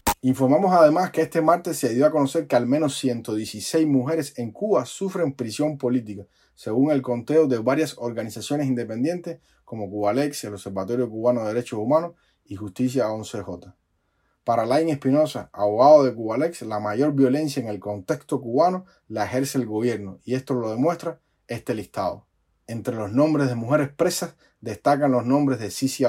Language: Spanish